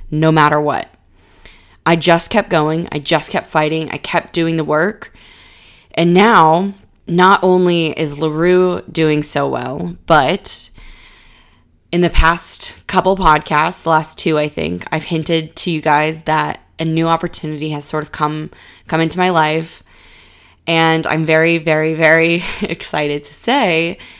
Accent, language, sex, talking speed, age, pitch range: American, English, female, 150 wpm, 20-39, 150-165 Hz